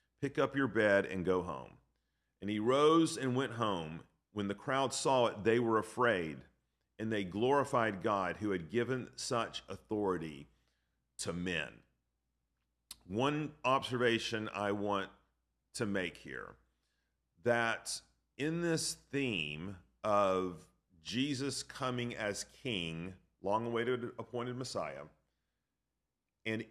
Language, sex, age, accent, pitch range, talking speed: English, male, 40-59, American, 85-125 Hz, 115 wpm